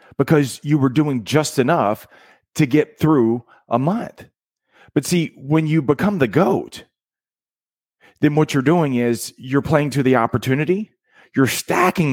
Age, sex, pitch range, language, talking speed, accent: 40-59, male, 105-140 Hz, English, 150 wpm, American